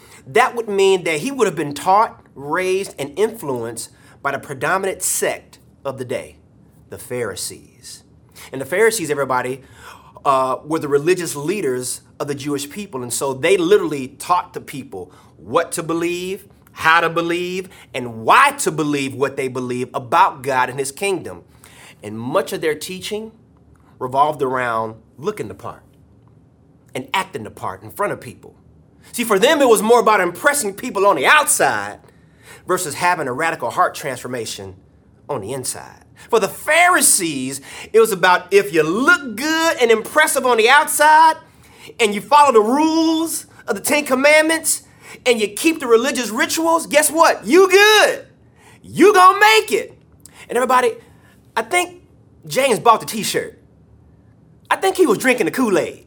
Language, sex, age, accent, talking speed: English, male, 30-49, American, 160 wpm